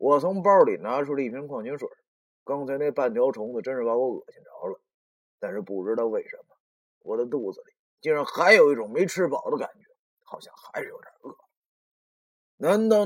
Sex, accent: male, native